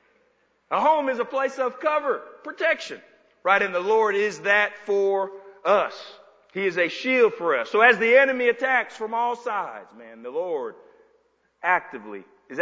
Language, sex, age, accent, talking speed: English, male, 40-59, American, 165 wpm